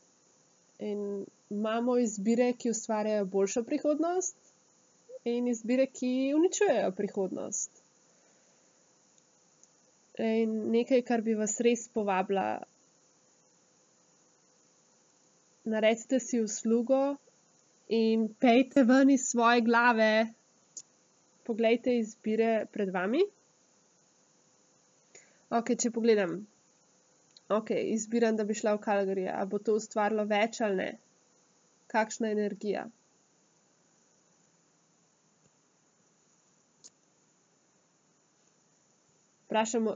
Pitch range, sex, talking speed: 210-240 Hz, female, 75 wpm